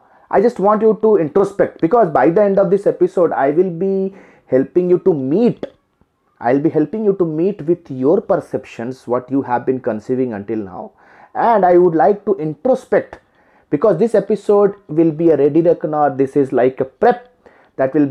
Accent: native